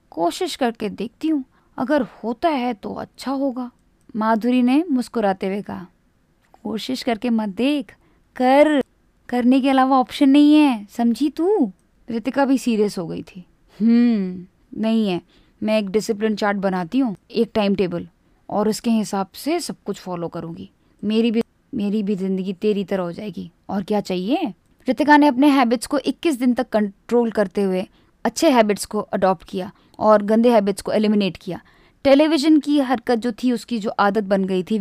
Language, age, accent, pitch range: Hindi, 20-39, native, 205-255 Hz